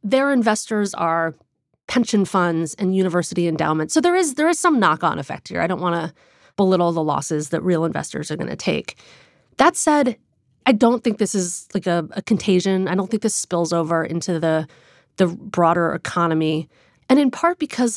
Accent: American